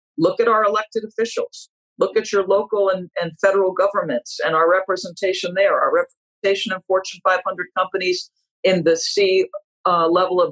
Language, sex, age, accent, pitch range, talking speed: English, female, 50-69, American, 160-215 Hz, 165 wpm